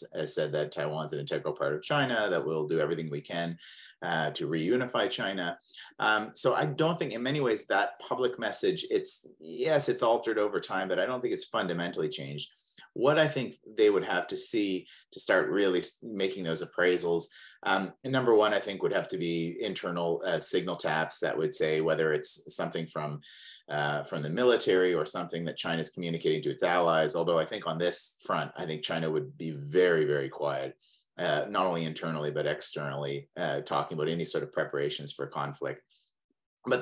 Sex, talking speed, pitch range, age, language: male, 195 wpm, 75-95 Hz, 30-49, English